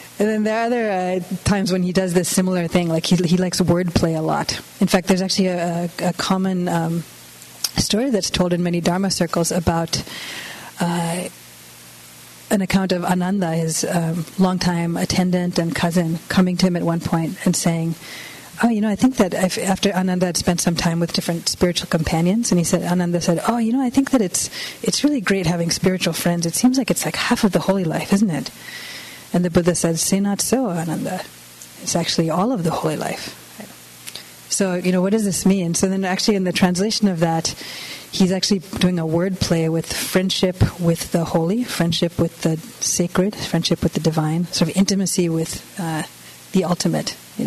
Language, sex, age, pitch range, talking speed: English, female, 30-49, 165-190 Hz, 205 wpm